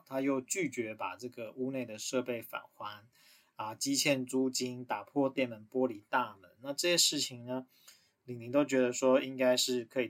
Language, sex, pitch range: Chinese, male, 120-145 Hz